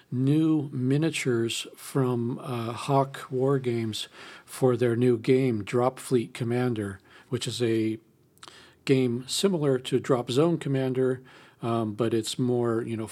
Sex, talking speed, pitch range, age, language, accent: male, 135 wpm, 115-135 Hz, 40-59, English, American